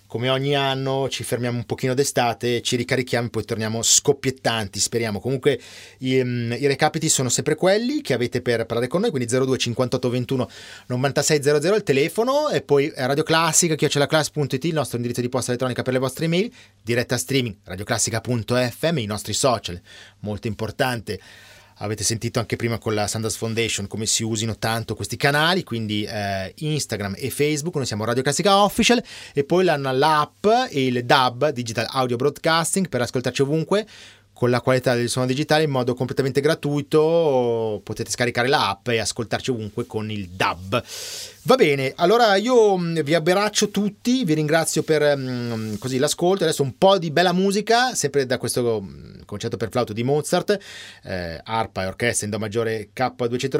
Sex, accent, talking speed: male, native, 160 wpm